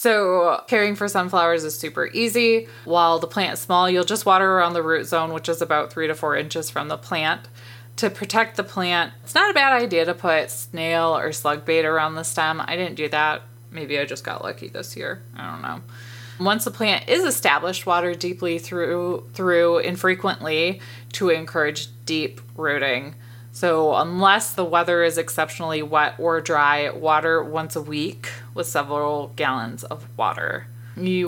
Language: English